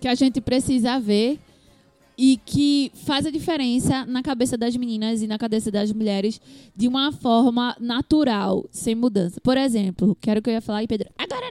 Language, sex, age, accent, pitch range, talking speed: Portuguese, female, 20-39, Brazilian, 220-280 Hz, 175 wpm